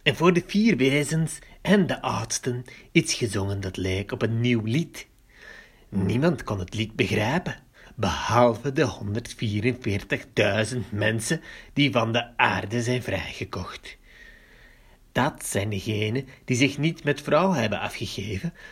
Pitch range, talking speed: 105-140 Hz, 130 wpm